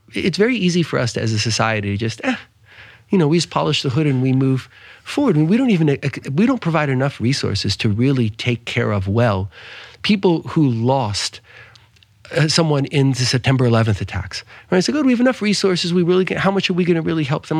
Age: 40-59